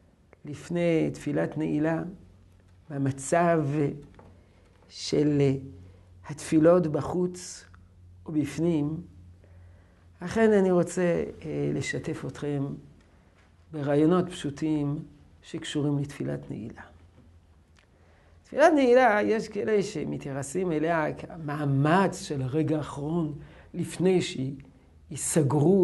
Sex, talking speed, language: male, 70 wpm, Hebrew